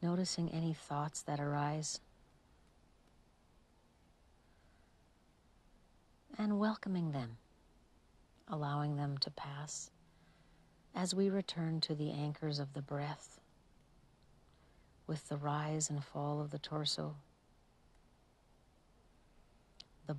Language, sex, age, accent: English, female, 50-69, American